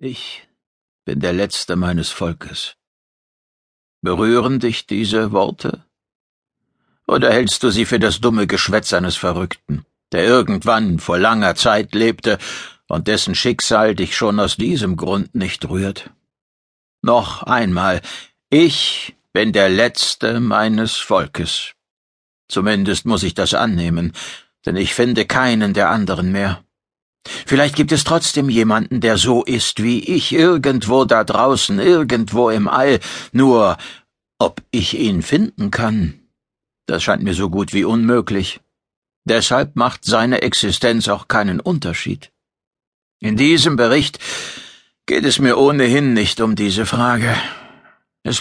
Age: 60-79